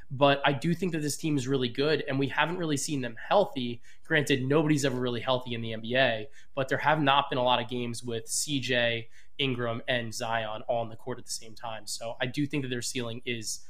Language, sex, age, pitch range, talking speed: English, male, 20-39, 120-145 Hz, 235 wpm